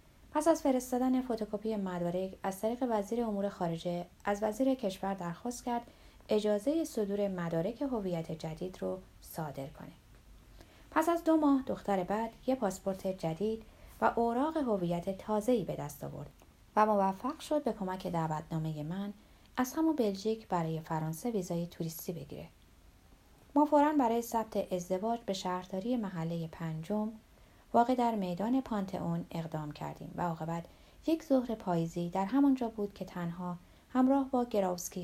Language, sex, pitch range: Persian, female, 175-235 Hz